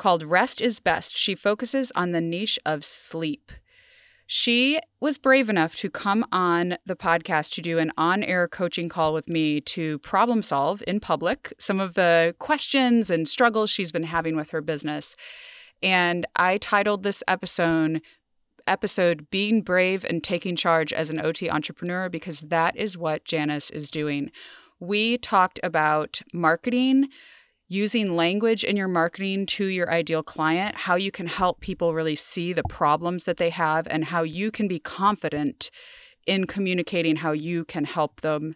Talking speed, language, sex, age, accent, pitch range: 165 wpm, English, female, 30-49, American, 160-210 Hz